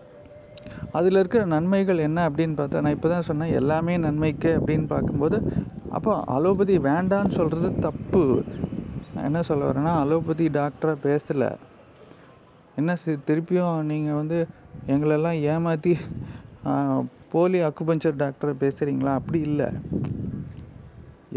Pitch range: 150-190 Hz